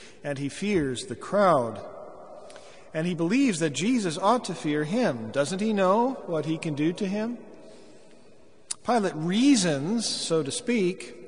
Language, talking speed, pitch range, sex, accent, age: English, 150 wpm, 135-195 Hz, male, American, 40-59